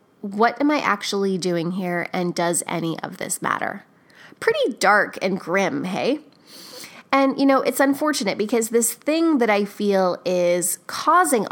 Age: 20-39